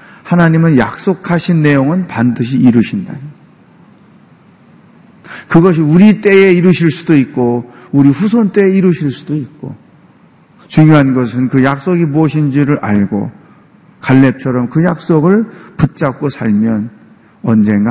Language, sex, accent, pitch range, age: Korean, male, native, 125-190 Hz, 40-59